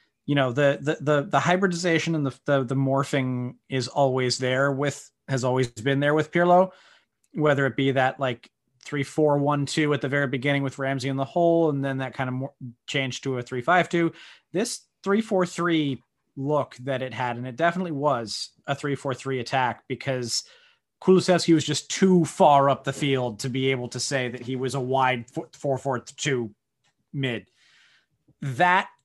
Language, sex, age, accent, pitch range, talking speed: English, male, 30-49, American, 130-155 Hz, 190 wpm